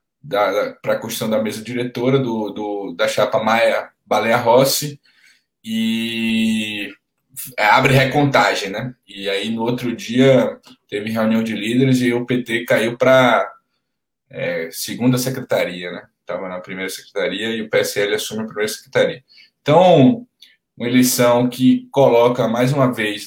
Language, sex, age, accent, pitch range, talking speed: Portuguese, male, 10-29, Brazilian, 110-130 Hz, 140 wpm